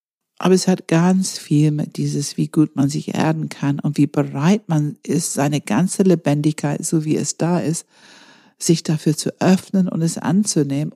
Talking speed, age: 180 wpm, 50-69